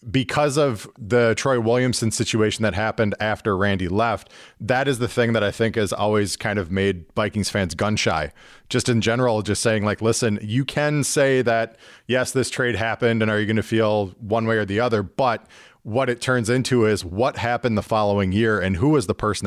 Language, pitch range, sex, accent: English, 100-120 Hz, male, American